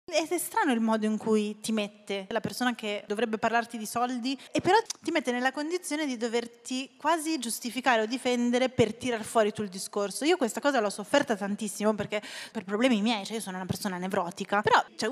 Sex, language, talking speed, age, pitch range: female, Italian, 205 wpm, 20-39, 205-250 Hz